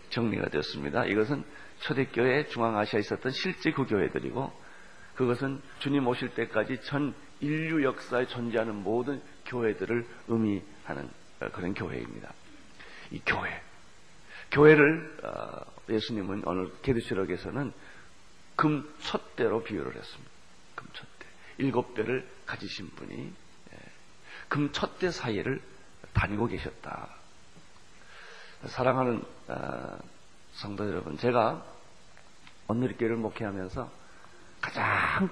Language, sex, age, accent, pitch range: Korean, male, 40-59, native, 100-130 Hz